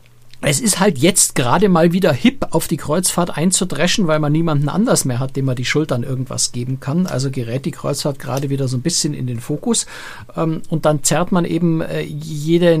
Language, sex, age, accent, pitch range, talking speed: German, male, 60-79, German, 135-170 Hz, 200 wpm